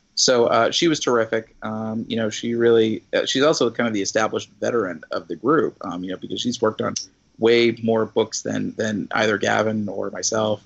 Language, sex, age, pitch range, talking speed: English, male, 30-49, 105-120 Hz, 210 wpm